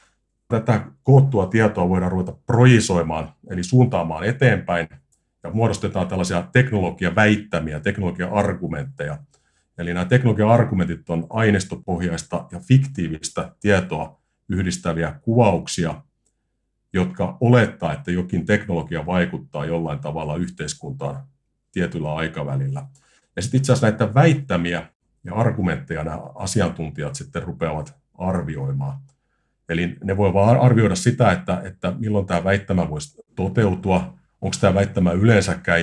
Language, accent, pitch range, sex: Finnish, native, 85-110 Hz, male